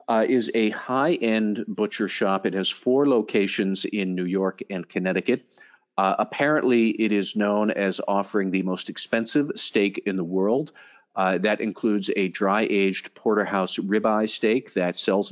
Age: 50-69